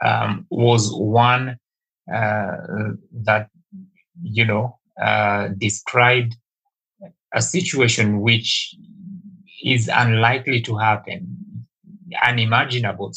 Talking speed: 75 wpm